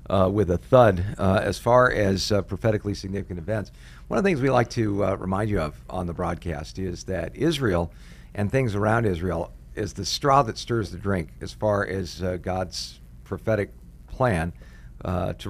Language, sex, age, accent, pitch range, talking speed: English, male, 50-69, American, 90-115 Hz, 190 wpm